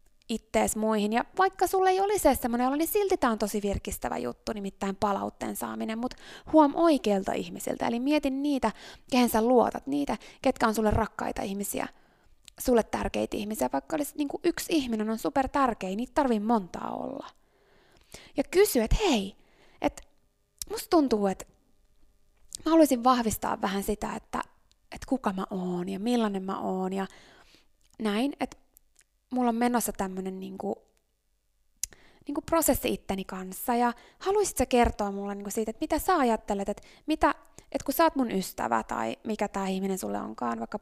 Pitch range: 200-270 Hz